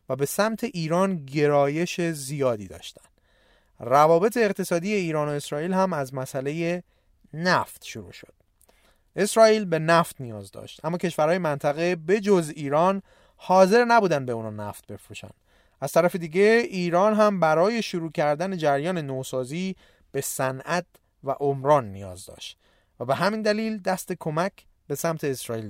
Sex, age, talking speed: male, 30-49, 140 wpm